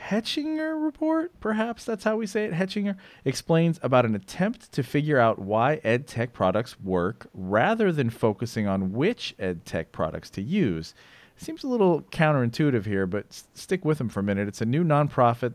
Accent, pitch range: American, 100-135 Hz